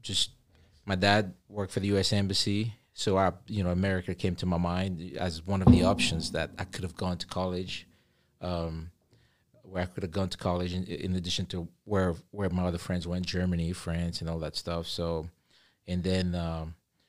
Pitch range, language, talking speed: 90-110 Hz, English, 200 wpm